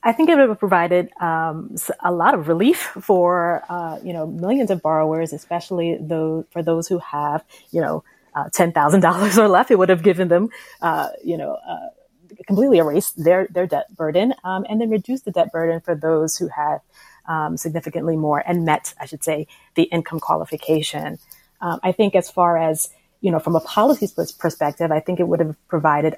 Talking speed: 195 wpm